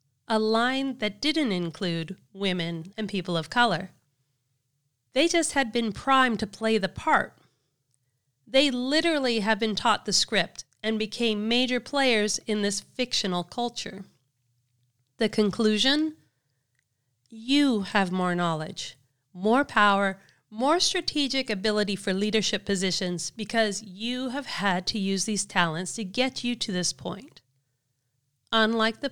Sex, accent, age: female, American, 40-59